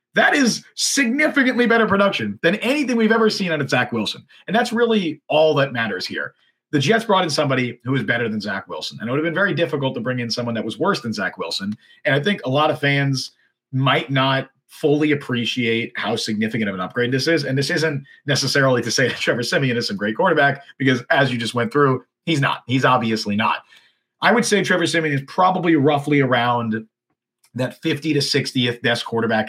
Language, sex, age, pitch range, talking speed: English, male, 40-59, 120-160 Hz, 215 wpm